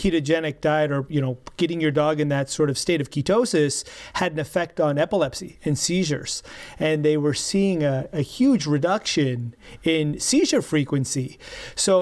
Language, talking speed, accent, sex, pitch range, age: English, 170 wpm, American, male, 150-185 Hz, 30-49